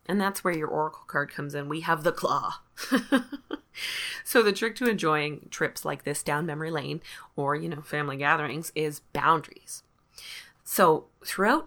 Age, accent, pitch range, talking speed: 20-39, American, 155-205 Hz, 165 wpm